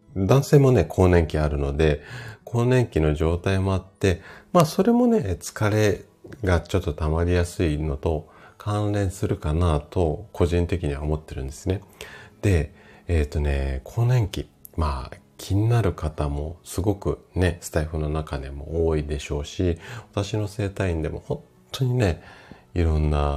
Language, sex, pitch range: Japanese, male, 75-100 Hz